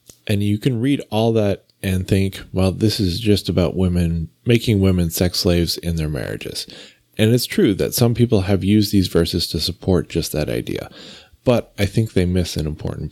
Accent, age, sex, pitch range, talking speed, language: American, 30-49, male, 85-105 Hz, 195 wpm, English